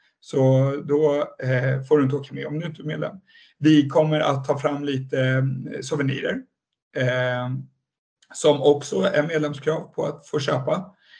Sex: male